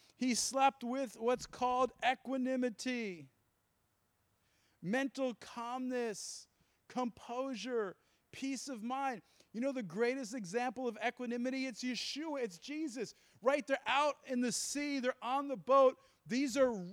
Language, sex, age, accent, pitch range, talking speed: English, male, 40-59, American, 240-300 Hz, 125 wpm